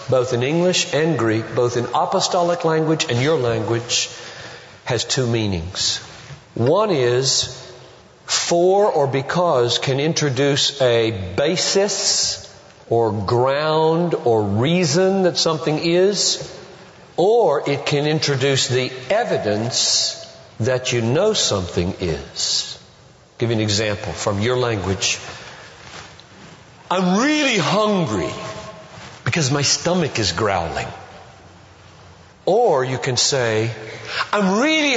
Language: English